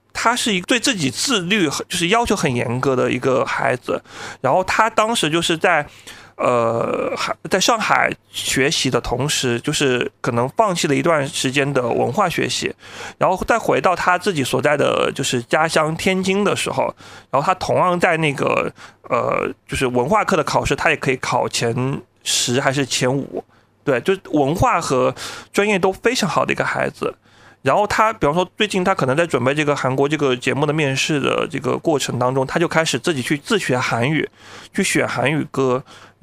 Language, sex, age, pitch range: Chinese, male, 30-49, 130-185 Hz